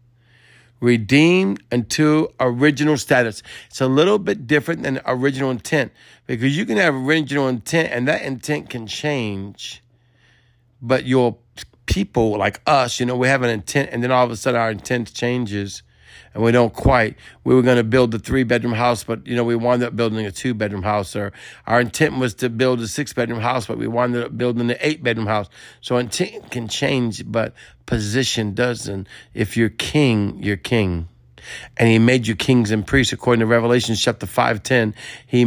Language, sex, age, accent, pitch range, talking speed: English, male, 50-69, American, 105-125 Hz, 190 wpm